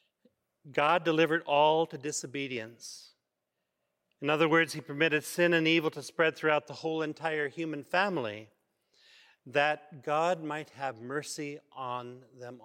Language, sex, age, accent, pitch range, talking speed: English, male, 40-59, American, 135-165 Hz, 135 wpm